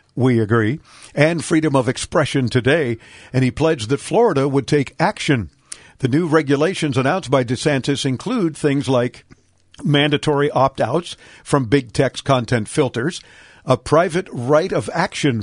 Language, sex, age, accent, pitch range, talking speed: English, male, 50-69, American, 130-160 Hz, 140 wpm